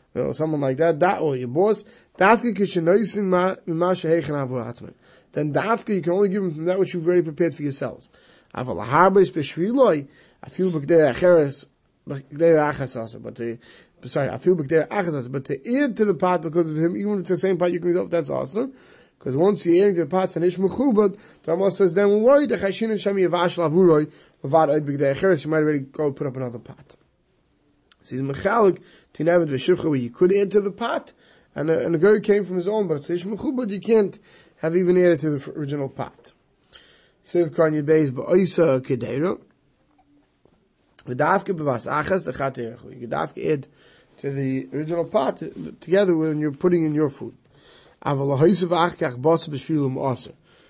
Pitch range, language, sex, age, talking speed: 140-190 Hz, English, male, 30-49, 135 wpm